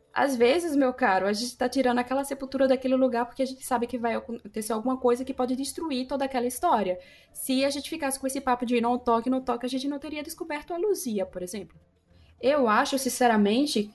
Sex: female